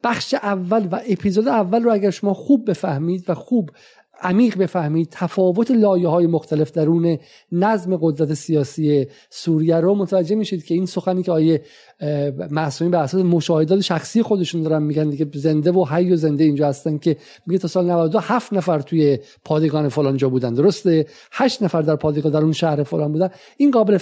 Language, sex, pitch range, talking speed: Persian, male, 155-200 Hz, 175 wpm